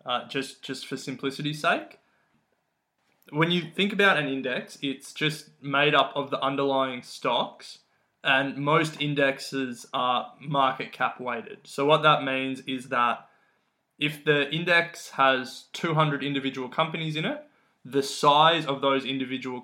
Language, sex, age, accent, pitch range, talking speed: English, male, 20-39, Australian, 130-155 Hz, 145 wpm